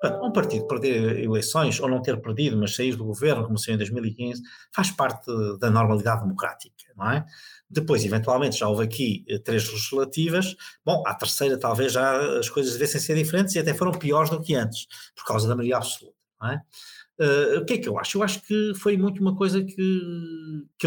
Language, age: Portuguese, 50-69